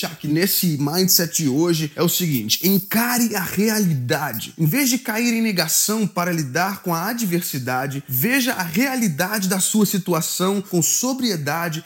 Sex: male